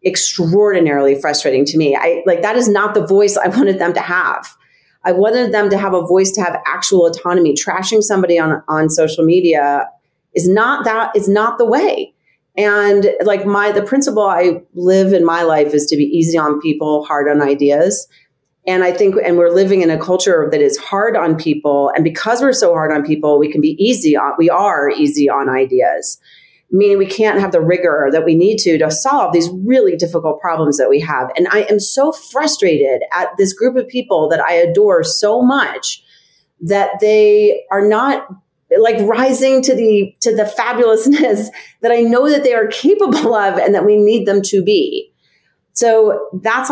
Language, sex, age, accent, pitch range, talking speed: English, female, 40-59, American, 160-230 Hz, 195 wpm